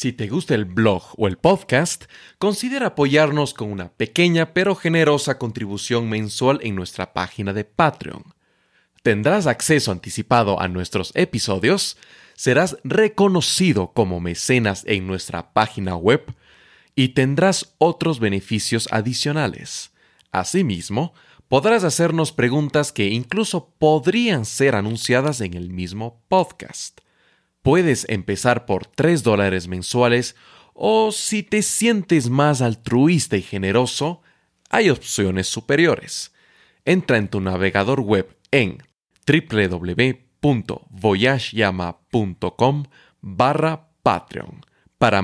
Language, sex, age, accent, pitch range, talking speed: Spanish, male, 30-49, Mexican, 105-155 Hz, 105 wpm